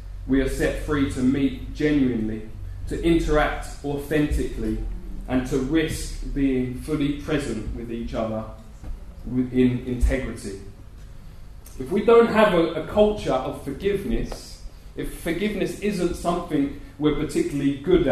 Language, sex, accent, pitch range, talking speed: English, male, British, 120-180 Hz, 125 wpm